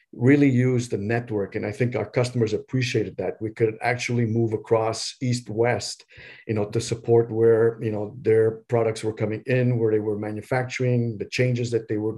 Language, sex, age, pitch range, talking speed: English, male, 50-69, 110-120 Hz, 190 wpm